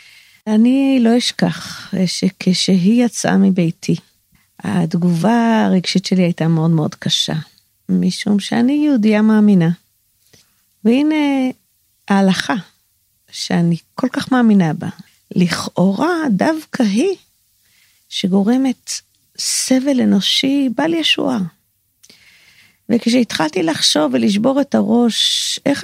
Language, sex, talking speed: Hebrew, female, 90 wpm